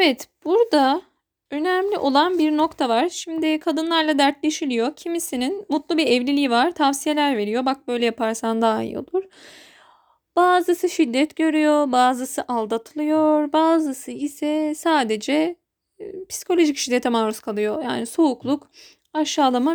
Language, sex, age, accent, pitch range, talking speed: Turkish, female, 10-29, native, 255-330 Hz, 115 wpm